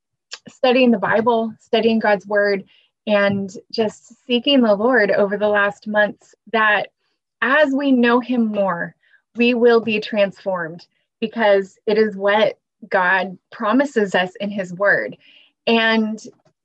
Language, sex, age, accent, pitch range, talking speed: English, female, 20-39, American, 200-235 Hz, 130 wpm